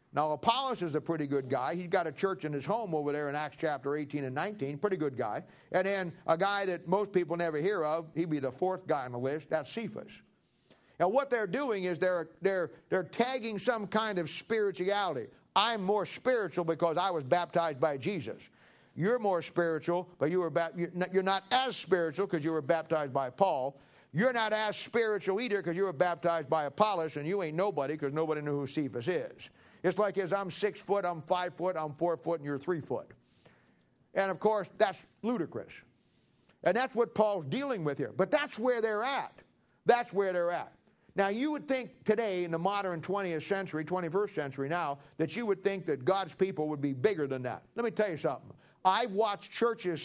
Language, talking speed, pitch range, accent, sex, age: English, 205 wpm, 160-210 Hz, American, male, 50-69